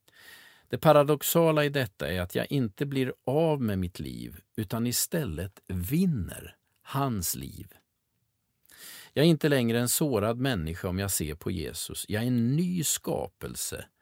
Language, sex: Swedish, male